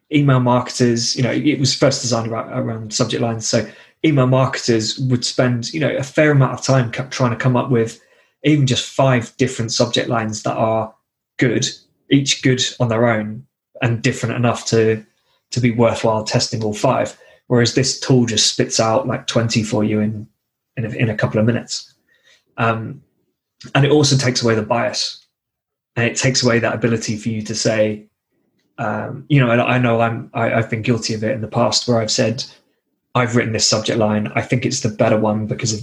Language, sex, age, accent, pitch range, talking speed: English, male, 20-39, British, 110-125 Hz, 205 wpm